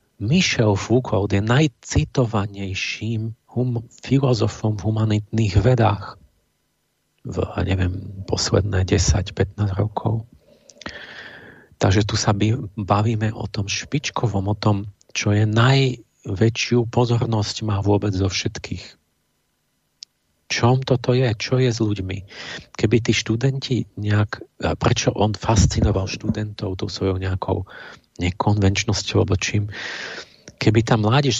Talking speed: 105 wpm